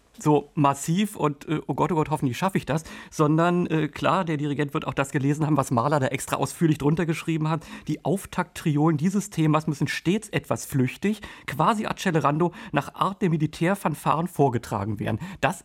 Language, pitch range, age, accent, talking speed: German, 145-180 Hz, 40-59, German, 180 wpm